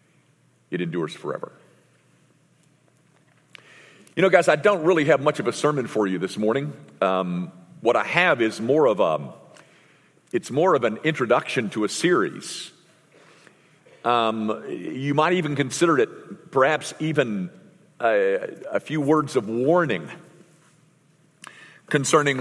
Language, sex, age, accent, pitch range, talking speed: English, male, 50-69, American, 130-170 Hz, 130 wpm